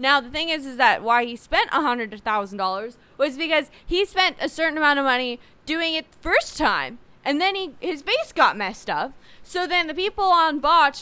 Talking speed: 200 wpm